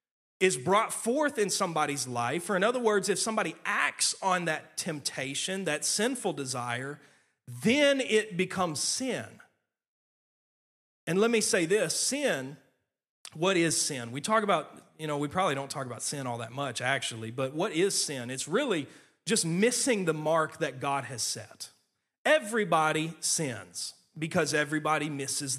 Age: 30-49